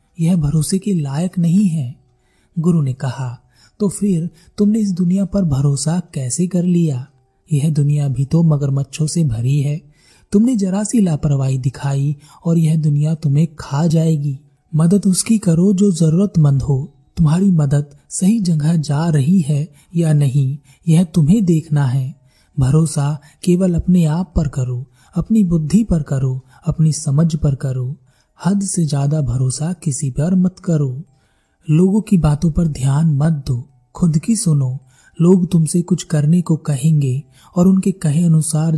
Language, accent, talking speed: Hindi, native, 155 wpm